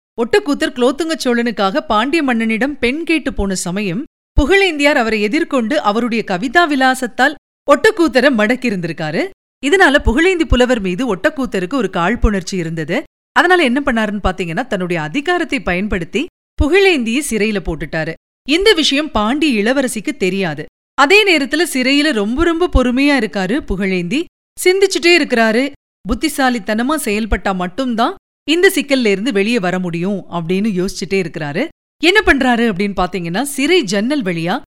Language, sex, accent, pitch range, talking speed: Tamil, female, native, 205-310 Hz, 100 wpm